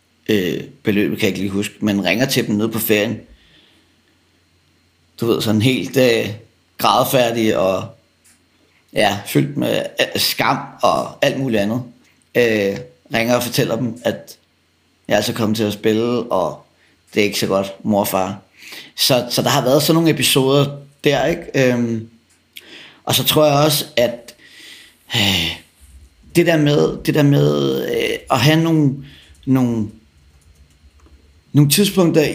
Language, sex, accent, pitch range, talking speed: Danish, male, native, 95-135 Hz, 155 wpm